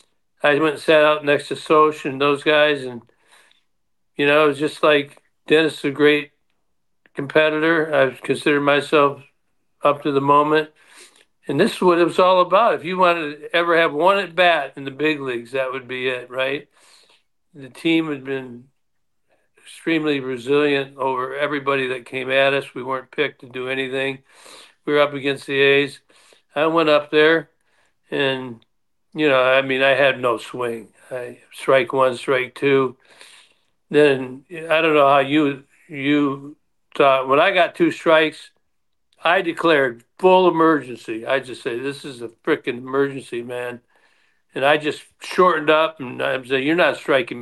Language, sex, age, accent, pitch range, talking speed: English, male, 60-79, American, 135-155 Hz, 170 wpm